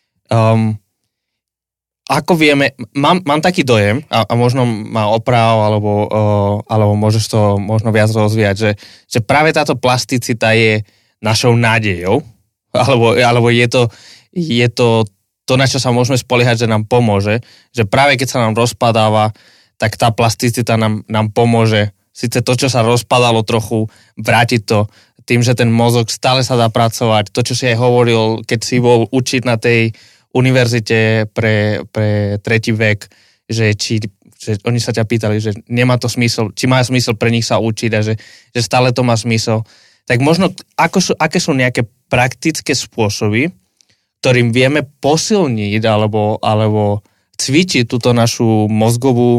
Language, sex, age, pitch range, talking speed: Slovak, male, 20-39, 110-125 Hz, 160 wpm